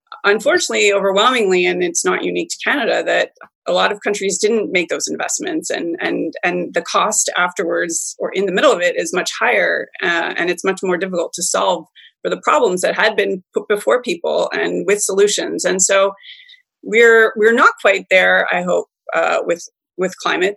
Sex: female